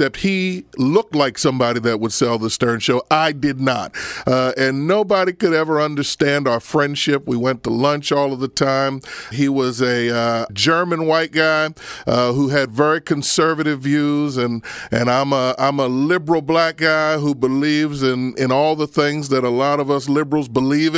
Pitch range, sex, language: 130-165 Hz, male, English